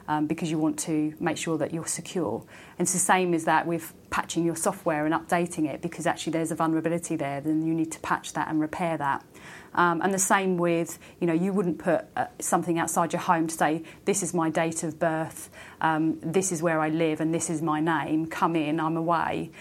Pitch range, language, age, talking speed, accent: 155-175 Hz, English, 30-49, 235 wpm, British